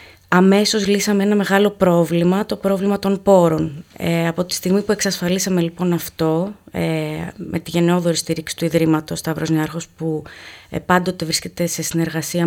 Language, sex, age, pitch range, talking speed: Greek, female, 20-39, 160-195 Hz, 155 wpm